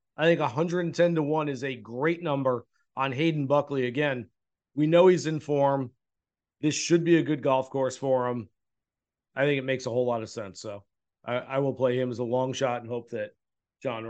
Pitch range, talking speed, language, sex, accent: 125-170 Hz, 215 wpm, English, male, American